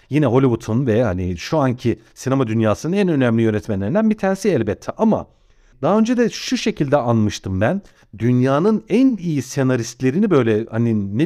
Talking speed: 155 wpm